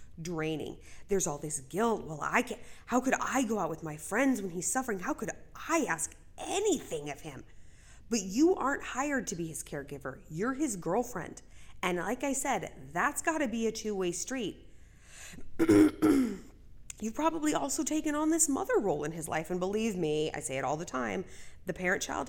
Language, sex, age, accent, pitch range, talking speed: English, female, 30-49, American, 165-270 Hz, 190 wpm